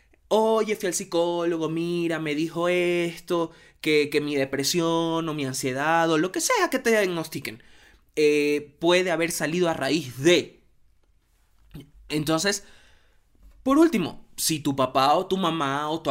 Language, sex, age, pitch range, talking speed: Spanish, male, 20-39, 150-205 Hz, 150 wpm